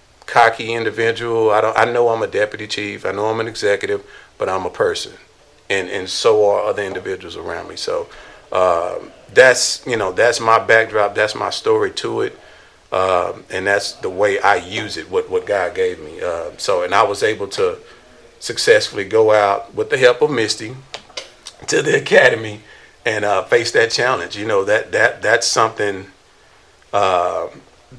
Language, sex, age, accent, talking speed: English, male, 40-59, American, 180 wpm